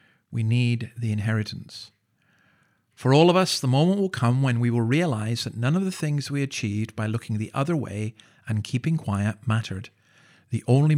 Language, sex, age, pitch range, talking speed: English, male, 50-69, 110-130 Hz, 185 wpm